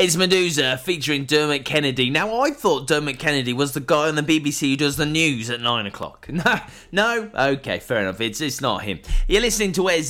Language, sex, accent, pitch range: English, male, British, 125-180 Hz